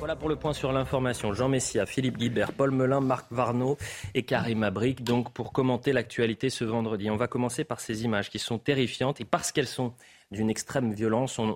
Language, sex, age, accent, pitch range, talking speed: French, male, 30-49, French, 105-130 Hz, 210 wpm